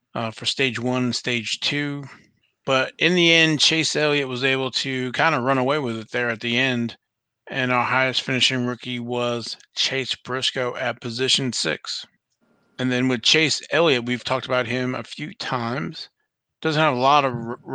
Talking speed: 185 wpm